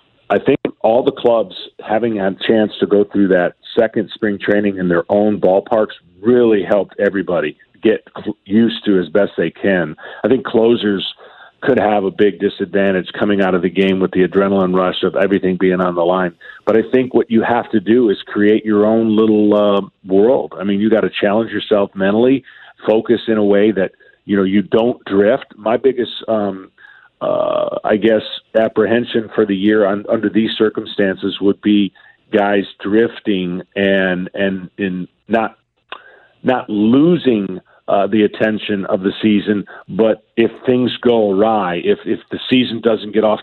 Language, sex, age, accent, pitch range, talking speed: English, male, 40-59, American, 100-115 Hz, 175 wpm